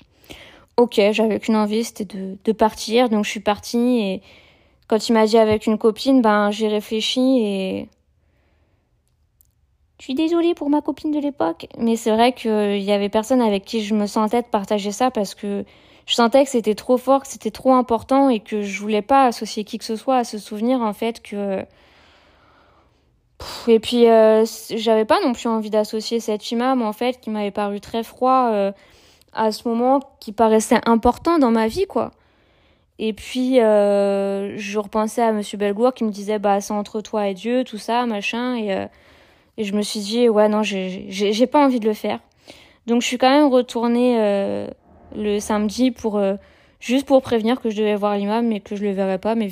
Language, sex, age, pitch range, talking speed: French, female, 20-39, 205-240 Hz, 205 wpm